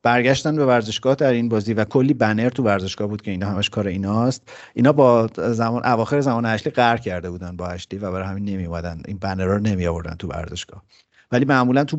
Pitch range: 95-120 Hz